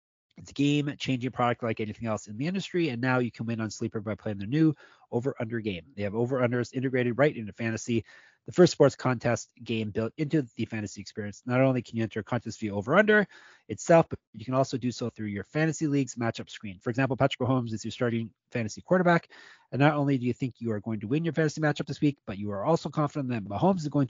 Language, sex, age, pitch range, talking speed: English, male, 30-49, 115-145 Hz, 240 wpm